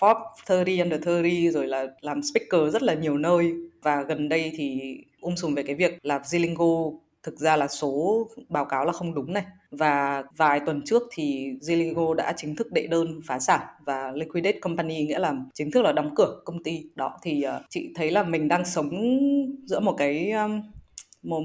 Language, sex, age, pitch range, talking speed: Vietnamese, female, 20-39, 145-185 Hz, 200 wpm